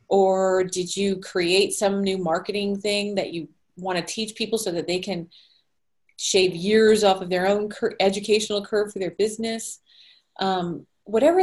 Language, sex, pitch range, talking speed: English, female, 185-225 Hz, 165 wpm